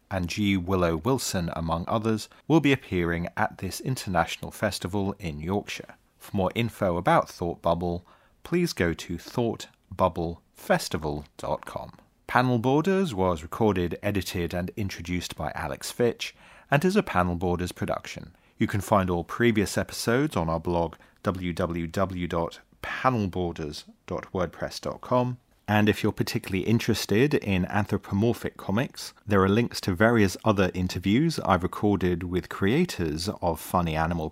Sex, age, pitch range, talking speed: male, 30-49, 90-110 Hz, 130 wpm